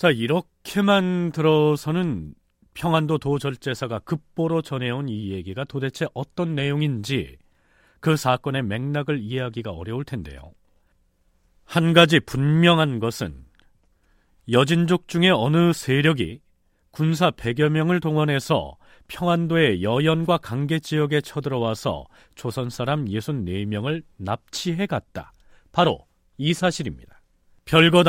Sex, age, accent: male, 40-59, native